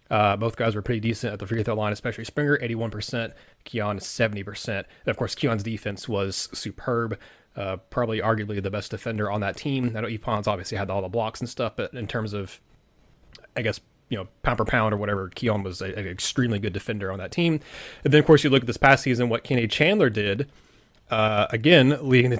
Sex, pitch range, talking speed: male, 105-125 Hz, 220 wpm